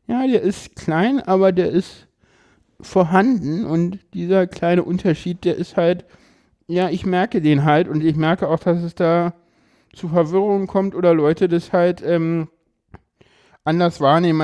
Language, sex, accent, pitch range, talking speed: German, male, German, 155-180 Hz, 155 wpm